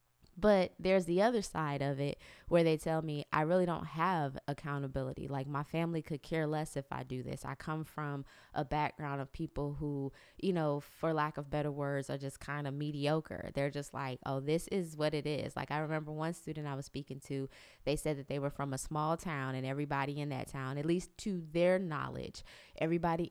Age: 20-39